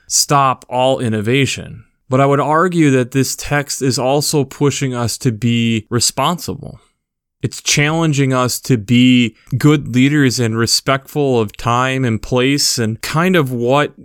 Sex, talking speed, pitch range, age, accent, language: male, 145 wpm, 115-140 Hz, 20-39, American, English